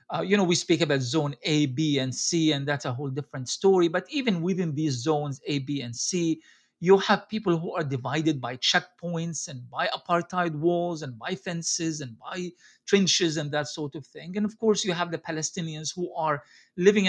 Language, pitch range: English, 145-180 Hz